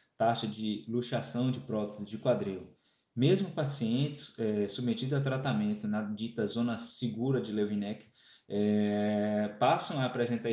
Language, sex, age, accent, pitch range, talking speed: Portuguese, male, 20-39, Brazilian, 110-140 Hz, 130 wpm